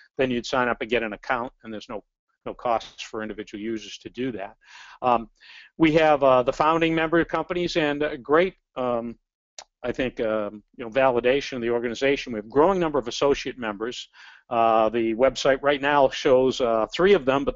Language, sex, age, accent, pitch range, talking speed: English, male, 50-69, American, 115-140 Hz, 205 wpm